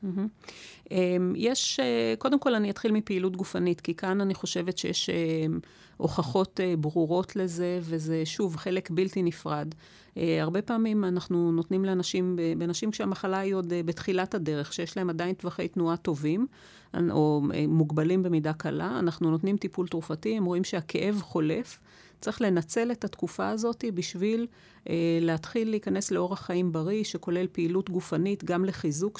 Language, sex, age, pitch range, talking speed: Hebrew, female, 40-59, 165-190 Hz, 140 wpm